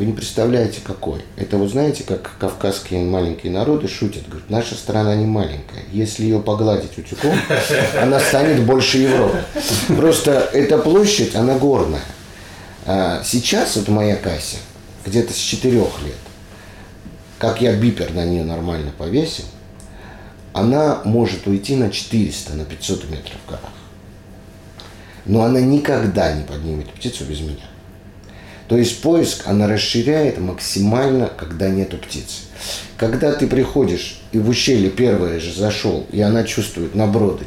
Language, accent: Russian, native